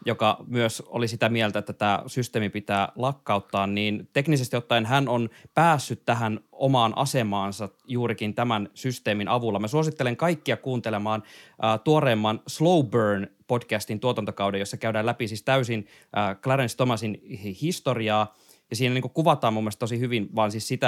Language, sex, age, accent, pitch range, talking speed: Finnish, male, 20-39, native, 105-125 Hz, 145 wpm